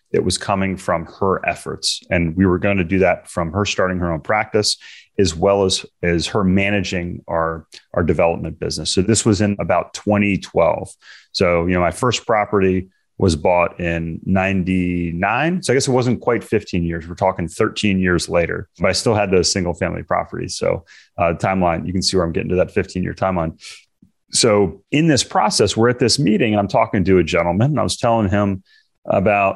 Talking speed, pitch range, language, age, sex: 200 wpm, 90-110 Hz, English, 30-49, male